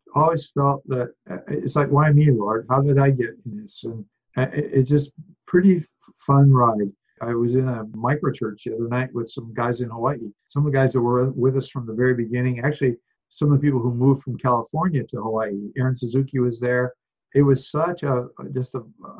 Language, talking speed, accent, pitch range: English, 205 wpm, American, 120-140 Hz